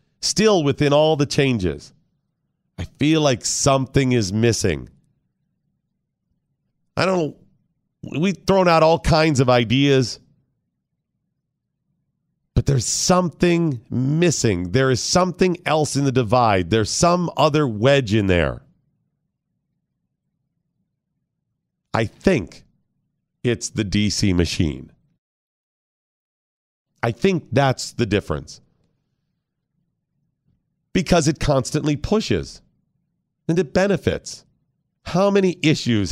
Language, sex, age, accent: English, male, 40-59, American